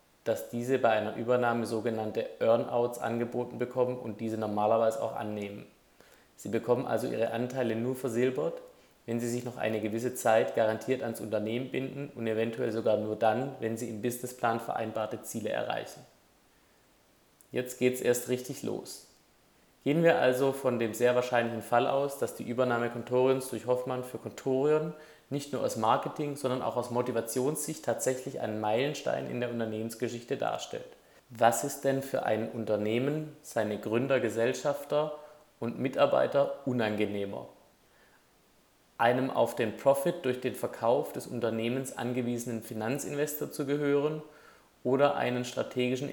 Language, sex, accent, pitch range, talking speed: German, male, German, 115-135 Hz, 145 wpm